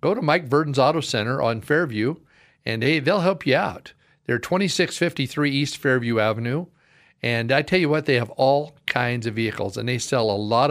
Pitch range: 120-145 Hz